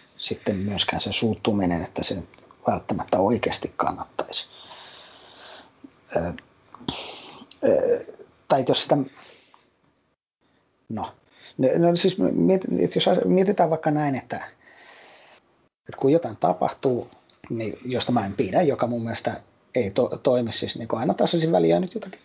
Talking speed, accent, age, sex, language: 125 wpm, native, 30-49, male, Finnish